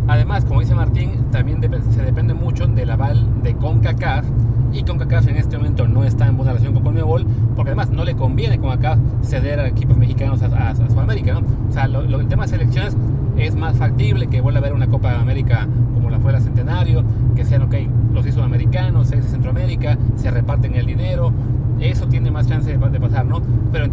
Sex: male